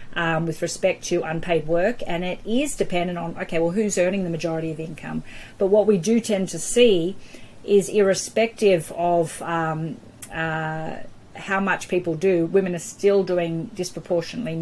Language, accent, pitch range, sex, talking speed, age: English, Australian, 160-185 Hz, female, 165 wpm, 30-49